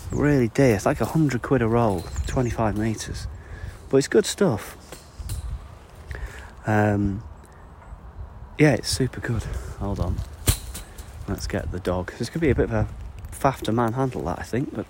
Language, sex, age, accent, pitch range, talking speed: English, male, 30-49, British, 80-105 Hz, 160 wpm